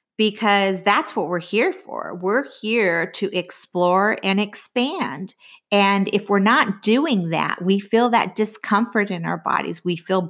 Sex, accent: female, American